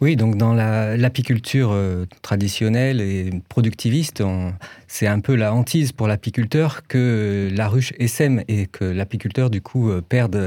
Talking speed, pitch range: 150 wpm, 105-125 Hz